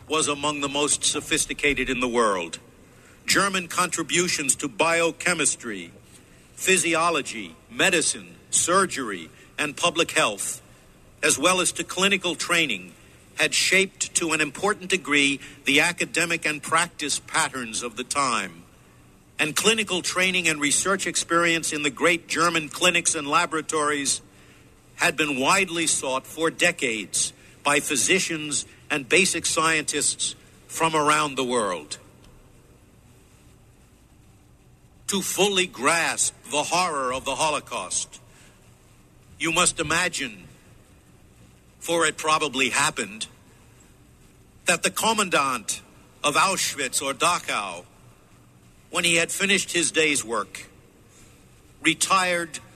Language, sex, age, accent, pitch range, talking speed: English, male, 60-79, American, 145-175 Hz, 110 wpm